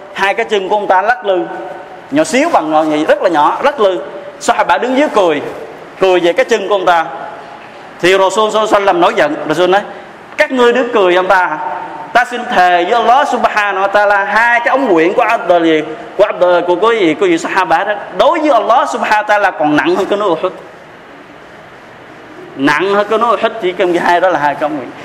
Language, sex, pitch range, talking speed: Vietnamese, male, 175-215 Hz, 195 wpm